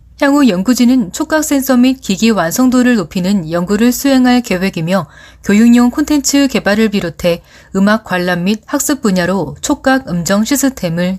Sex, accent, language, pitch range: female, native, Korean, 180-245 Hz